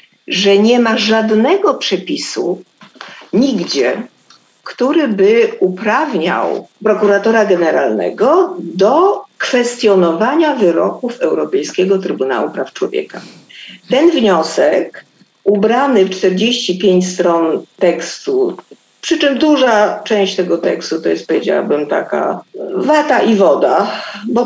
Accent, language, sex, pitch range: native, Polish, female, 170-255 Hz